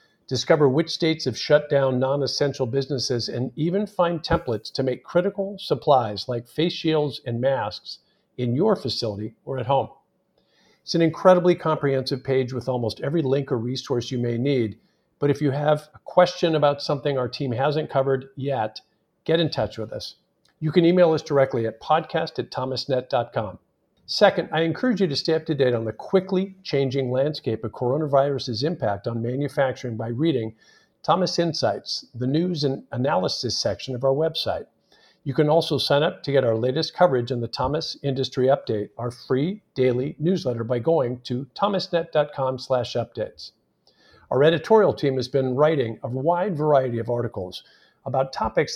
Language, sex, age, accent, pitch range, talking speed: English, male, 50-69, American, 125-160 Hz, 165 wpm